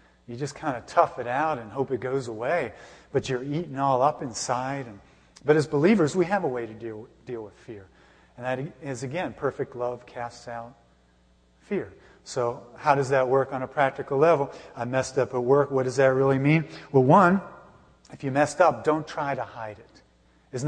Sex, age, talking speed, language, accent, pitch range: male, 40-59, 205 wpm, English, American, 115-150 Hz